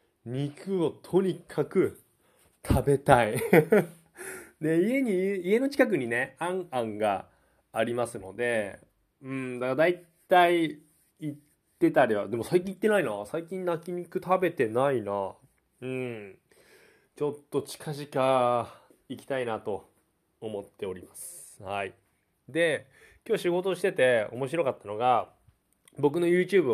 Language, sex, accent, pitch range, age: Japanese, male, native, 130-185 Hz, 20-39